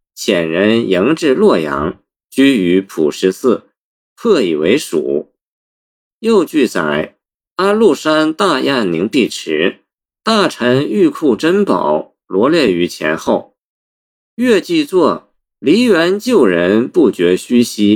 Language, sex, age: Chinese, male, 50-69